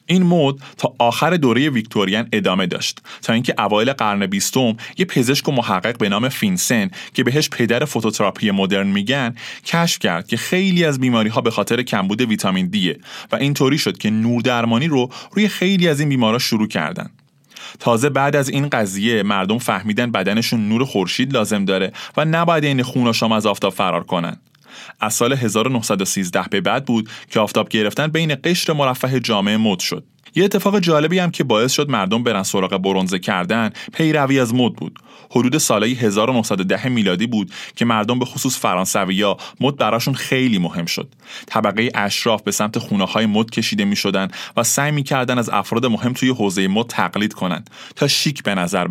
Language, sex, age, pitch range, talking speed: Persian, male, 20-39, 105-145 Hz, 180 wpm